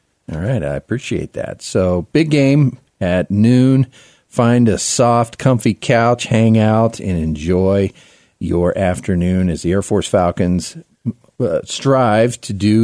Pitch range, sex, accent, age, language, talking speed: 95-125 Hz, male, American, 40-59, English, 140 wpm